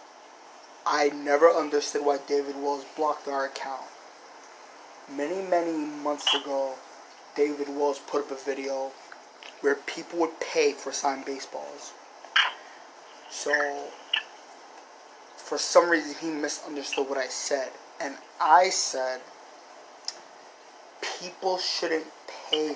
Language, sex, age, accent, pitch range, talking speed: English, male, 20-39, American, 140-160 Hz, 110 wpm